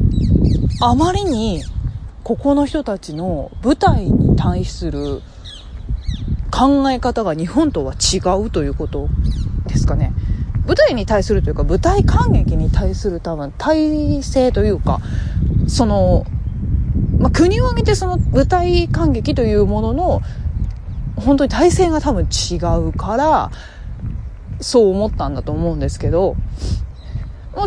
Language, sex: Japanese, female